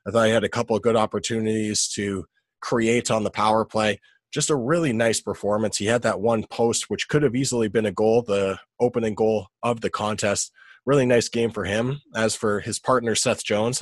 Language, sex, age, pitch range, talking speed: English, male, 20-39, 100-120 Hz, 215 wpm